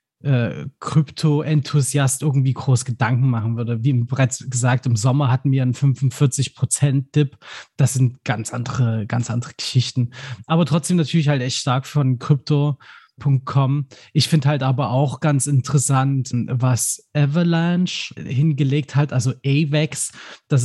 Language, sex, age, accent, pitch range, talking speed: German, male, 20-39, German, 130-150 Hz, 130 wpm